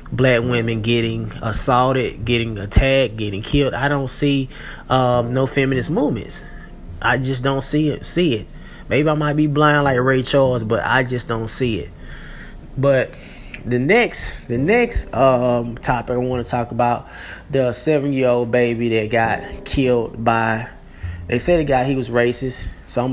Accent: American